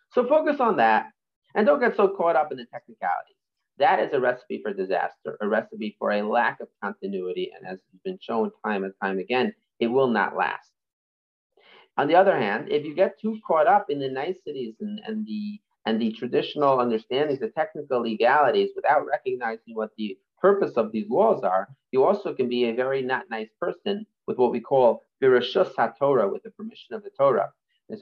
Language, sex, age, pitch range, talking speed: English, male, 40-59, 125-210 Hz, 195 wpm